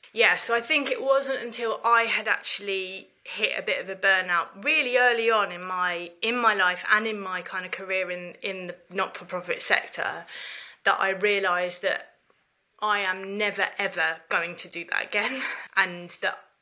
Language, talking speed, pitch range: English, 180 wpm, 190-240 Hz